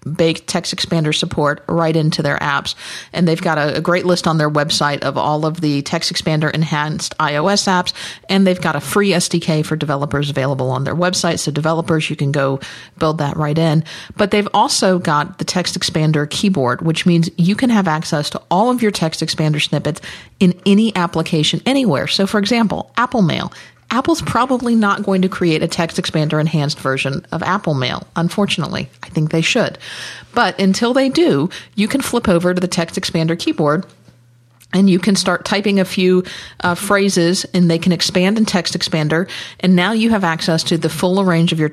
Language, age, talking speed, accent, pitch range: English, 40-59, 195 wpm, American, 155-190 Hz